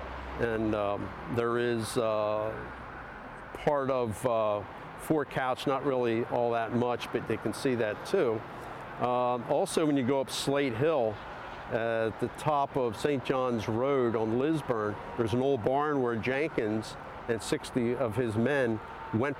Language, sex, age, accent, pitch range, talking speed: English, male, 50-69, American, 110-130 Hz, 160 wpm